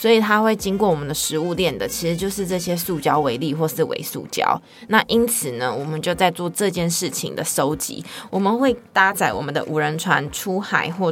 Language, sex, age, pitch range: Chinese, female, 20-39, 155-195 Hz